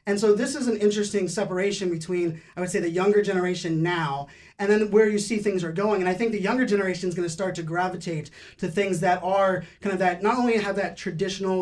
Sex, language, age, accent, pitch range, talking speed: male, English, 20-39, American, 175-205 Hz, 245 wpm